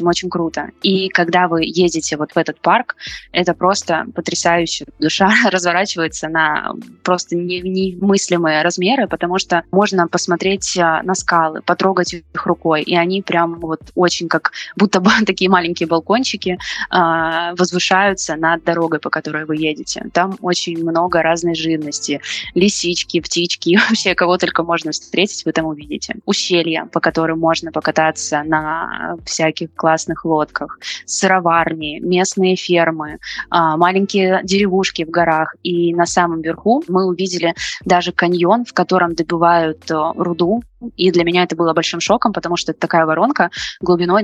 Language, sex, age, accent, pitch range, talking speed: Russian, female, 20-39, native, 165-185 Hz, 140 wpm